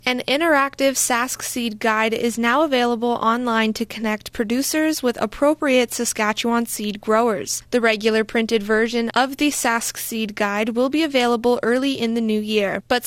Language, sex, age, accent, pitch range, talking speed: English, female, 20-39, American, 225-260 Hz, 160 wpm